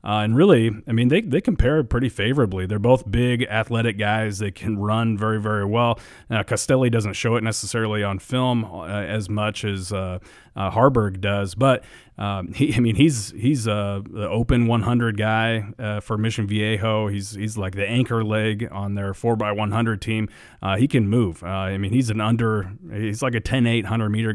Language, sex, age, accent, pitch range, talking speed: English, male, 30-49, American, 100-115 Hz, 200 wpm